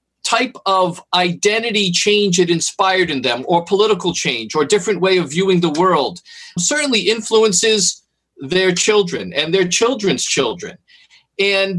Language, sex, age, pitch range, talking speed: English, male, 40-59, 175-220 Hz, 135 wpm